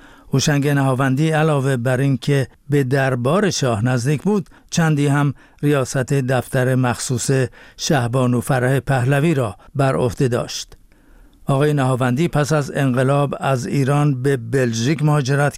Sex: male